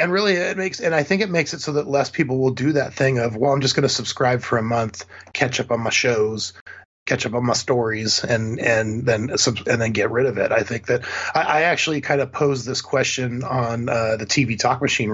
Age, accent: 30-49, American